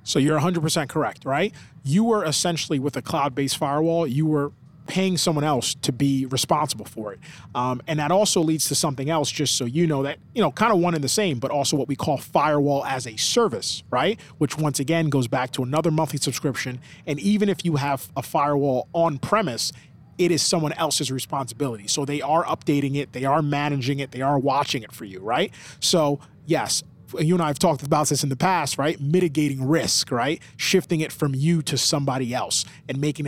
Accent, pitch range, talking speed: American, 130-155 Hz, 210 wpm